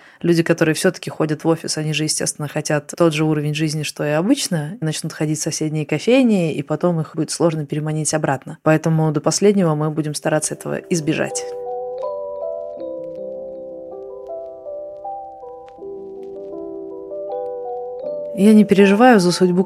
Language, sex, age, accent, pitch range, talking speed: Russian, female, 20-39, native, 145-180 Hz, 130 wpm